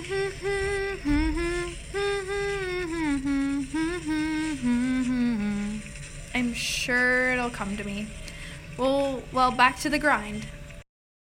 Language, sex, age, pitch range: English, female, 10-29, 210-260 Hz